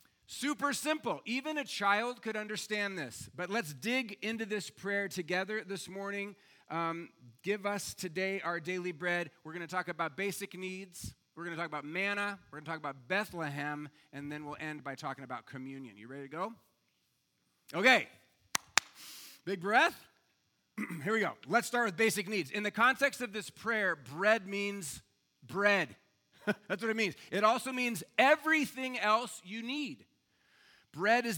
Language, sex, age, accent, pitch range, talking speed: English, male, 30-49, American, 155-205 Hz, 170 wpm